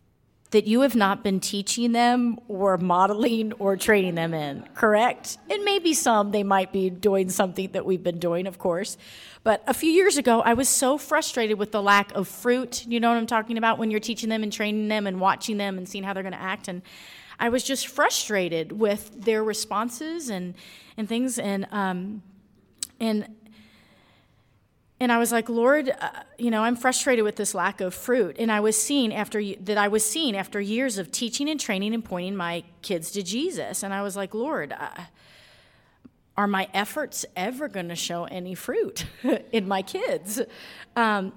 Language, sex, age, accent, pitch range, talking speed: English, female, 30-49, American, 195-235 Hz, 195 wpm